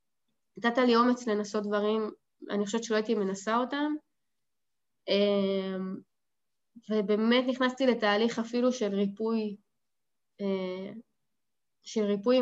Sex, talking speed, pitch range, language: female, 90 wpm, 205-240 Hz, Hebrew